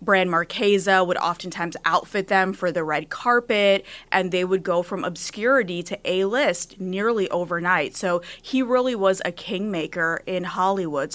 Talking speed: 150 wpm